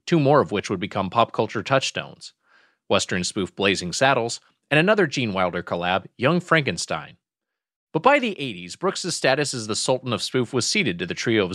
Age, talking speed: 30-49, 190 wpm